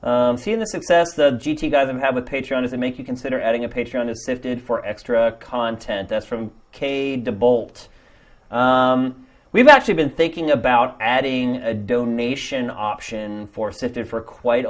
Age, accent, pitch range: 30-49, American, 105-130 Hz